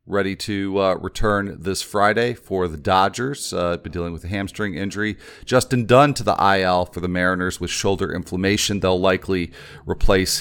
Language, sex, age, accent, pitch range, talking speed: English, male, 40-59, American, 90-115 Hz, 175 wpm